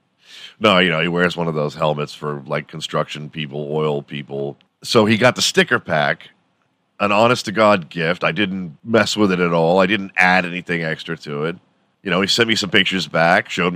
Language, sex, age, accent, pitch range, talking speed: English, male, 40-59, American, 80-110 Hz, 205 wpm